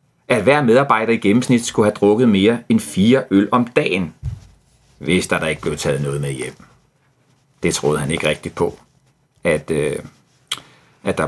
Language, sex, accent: Danish, male, native